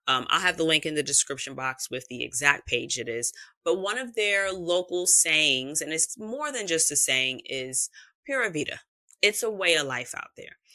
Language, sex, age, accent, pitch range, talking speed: English, female, 30-49, American, 135-175 Hz, 210 wpm